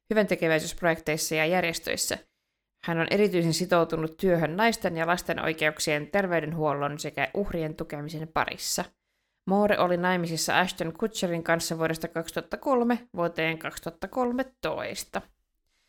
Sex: female